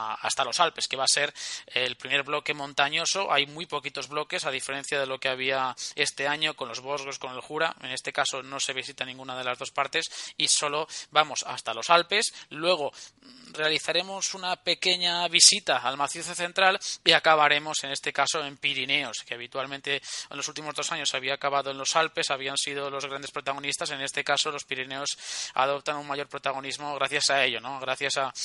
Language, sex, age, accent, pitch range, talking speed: Spanish, male, 20-39, Spanish, 135-165 Hz, 200 wpm